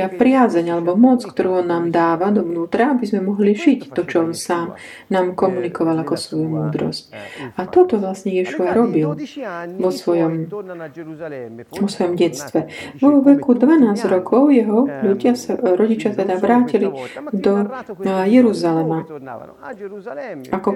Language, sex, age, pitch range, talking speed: Slovak, female, 30-49, 170-225 Hz, 125 wpm